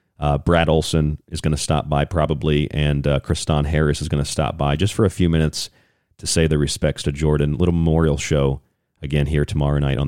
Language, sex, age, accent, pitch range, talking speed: English, male, 40-59, American, 75-95 Hz, 220 wpm